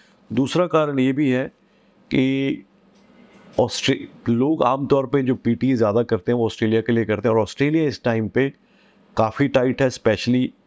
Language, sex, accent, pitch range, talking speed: Hindi, male, native, 105-125 Hz, 170 wpm